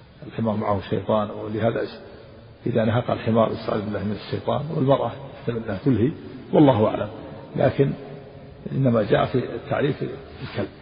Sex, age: male, 50-69